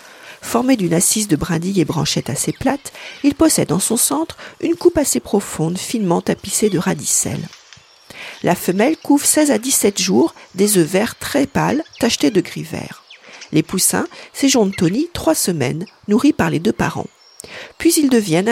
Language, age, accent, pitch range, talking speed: French, 50-69, French, 175-270 Hz, 170 wpm